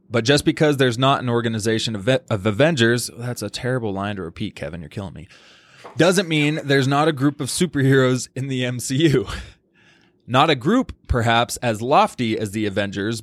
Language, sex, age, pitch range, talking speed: English, male, 20-39, 105-140 Hz, 180 wpm